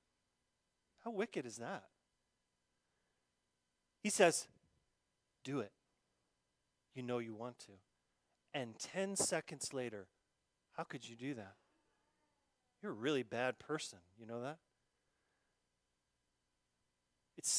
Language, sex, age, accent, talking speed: English, male, 40-59, American, 105 wpm